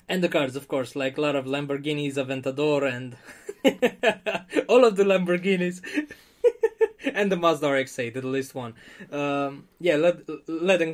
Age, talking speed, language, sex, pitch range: 20-39, 155 wpm, English, male, 145-185 Hz